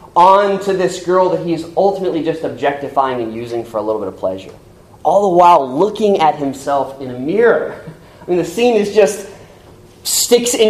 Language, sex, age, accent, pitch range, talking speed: English, male, 30-49, American, 150-185 Hz, 190 wpm